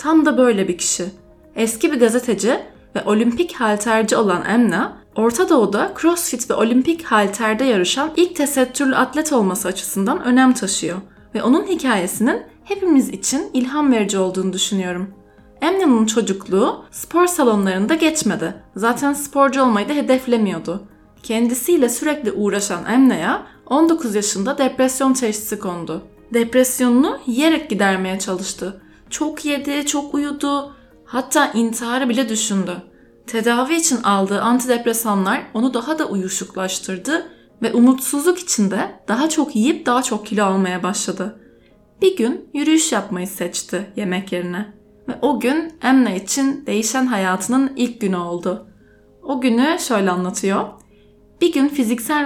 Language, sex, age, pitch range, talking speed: Turkish, female, 10-29, 195-275 Hz, 125 wpm